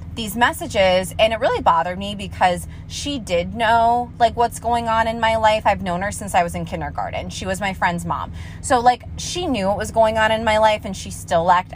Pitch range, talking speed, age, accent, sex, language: 170-220 Hz, 235 wpm, 20-39, American, female, English